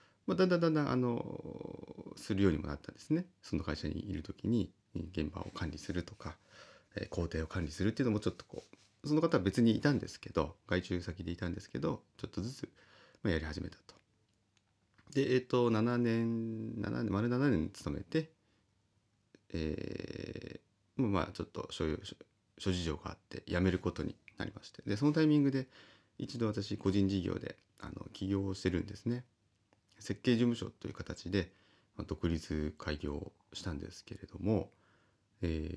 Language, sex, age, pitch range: Japanese, male, 30-49, 90-115 Hz